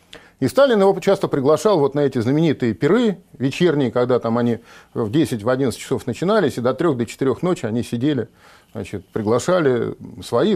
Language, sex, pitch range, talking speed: Russian, male, 120-165 Hz, 165 wpm